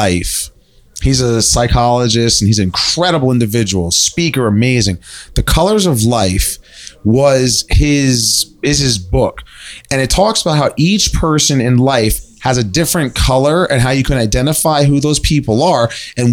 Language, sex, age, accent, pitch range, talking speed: English, male, 30-49, American, 120-165 Hz, 160 wpm